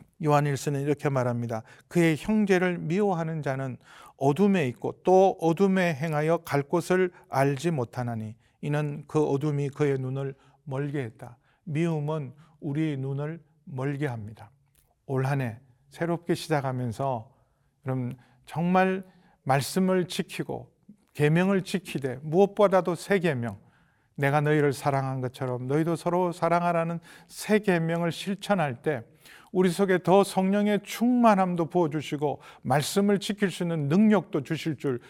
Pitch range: 135-175 Hz